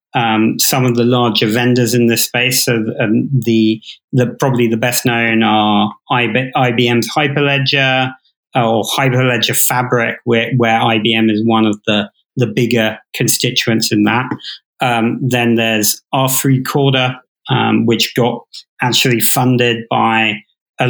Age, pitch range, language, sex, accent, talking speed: 40-59, 115-130 Hz, English, male, British, 140 wpm